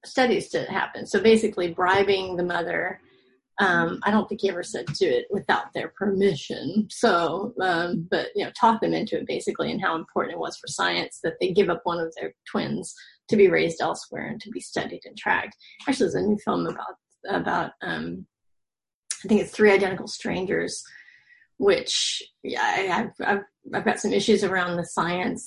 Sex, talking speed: female, 190 wpm